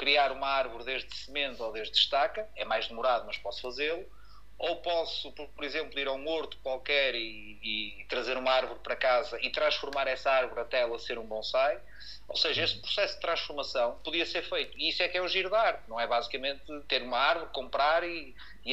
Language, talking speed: Portuguese, 205 wpm